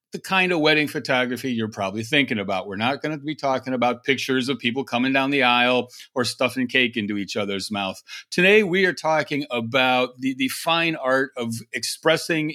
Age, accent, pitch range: 40-59, American, 115-155 Hz